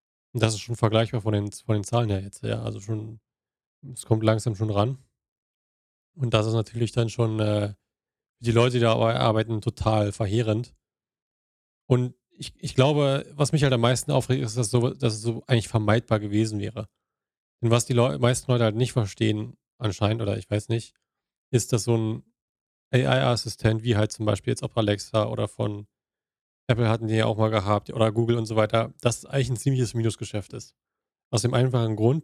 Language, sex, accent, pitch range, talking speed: German, male, German, 110-125 Hz, 195 wpm